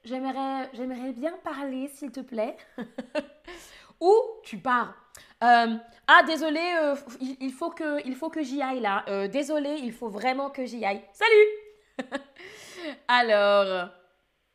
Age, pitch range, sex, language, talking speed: 20-39, 200-285 Hz, female, French, 135 wpm